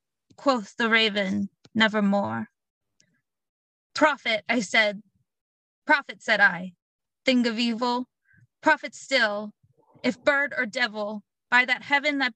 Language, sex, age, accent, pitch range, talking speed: English, female, 20-39, American, 205-260 Hz, 110 wpm